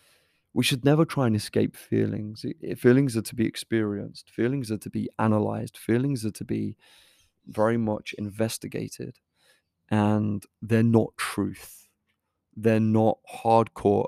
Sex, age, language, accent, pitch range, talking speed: male, 30-49, English, British, 105-115 Hz, 130 wpm